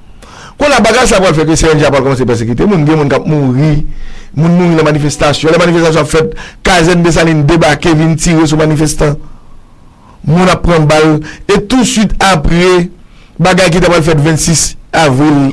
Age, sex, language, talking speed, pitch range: 50-69, male, English, 210 wpm, 145-170 Hz